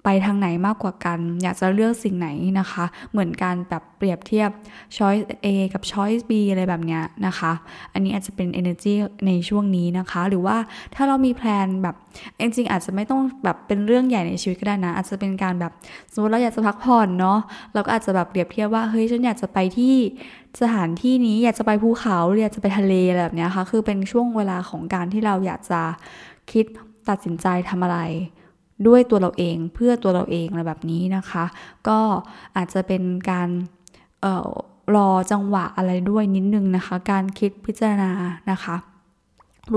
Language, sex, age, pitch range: Thai, female, 10-29, 180-215 Hz